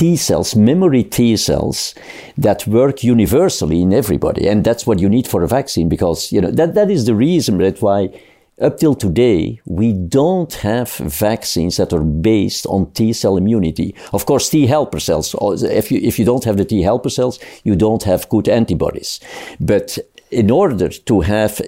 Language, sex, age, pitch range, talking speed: English, male, 50-69, 90-115 Hz, 185 wpm